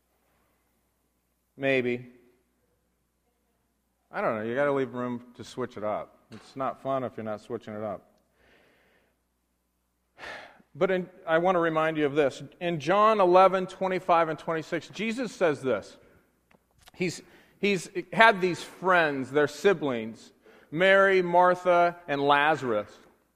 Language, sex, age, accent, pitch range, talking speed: English, male, 40-59, American, 135-190 Hz, 130 wpm